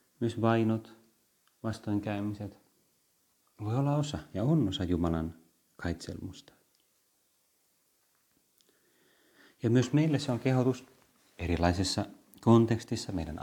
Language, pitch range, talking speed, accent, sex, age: Finnish, 95-115 Hz, 90 wpm, native, male, 30-49